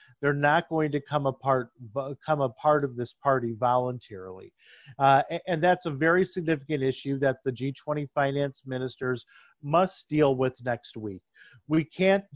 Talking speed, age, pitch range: 155 wpm, 40-59, 135-170 Hz